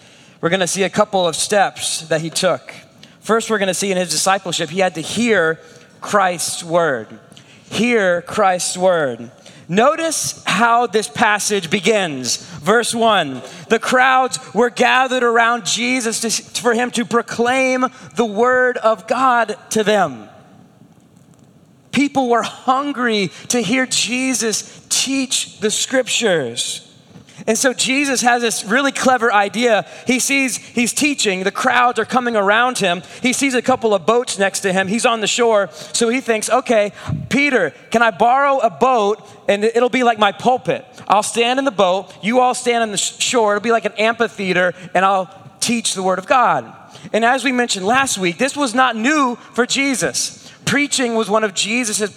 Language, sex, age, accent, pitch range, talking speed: English, male, 30-49, American, 190-245 Hz, 170 wpm